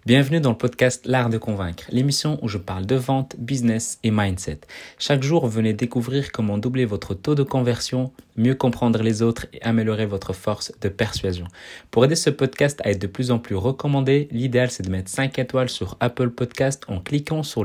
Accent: French